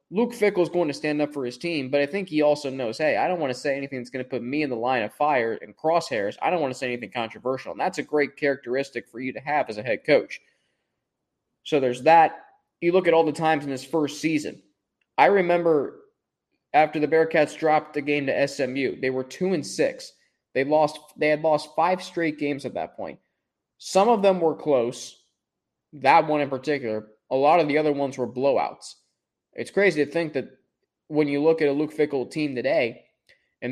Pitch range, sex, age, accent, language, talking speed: 130-160 Hz, male, 20-39, American, English, 225 wpm